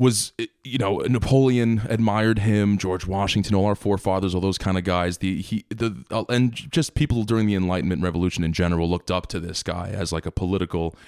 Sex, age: male, 20-39